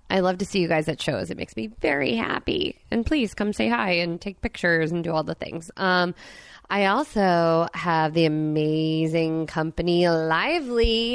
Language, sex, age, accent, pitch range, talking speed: English, female, 20-39, American, 160-210 Hz, 185 wpm